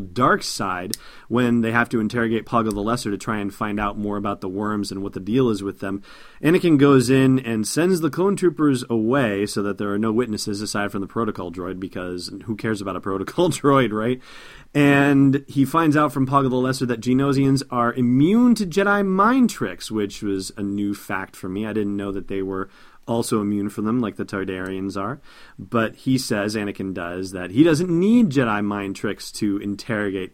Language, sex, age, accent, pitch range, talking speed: English, male, 30-49, American, 100-130 Hz, 210 wpm